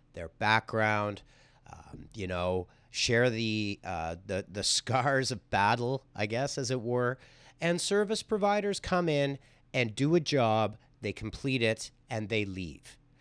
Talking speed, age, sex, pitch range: 150 wpm, 40-59, male, 110-145 Hz